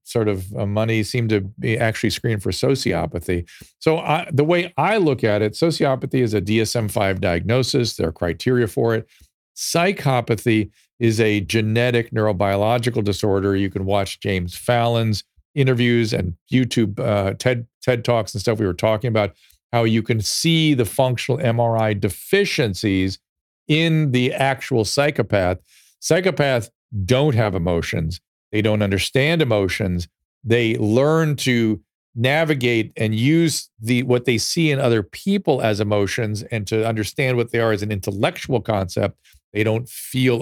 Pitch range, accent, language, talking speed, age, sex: 100-125 Hz, American, English, 150 wpm, 50-69, male